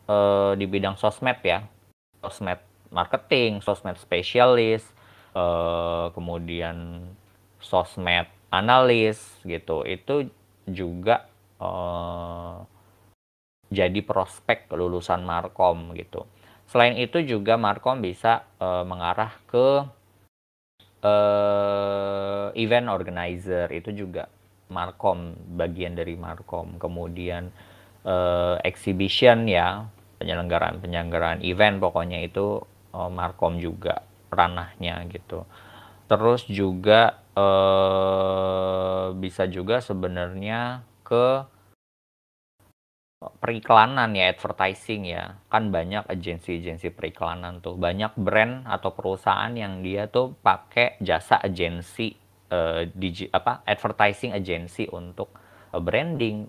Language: Indonesian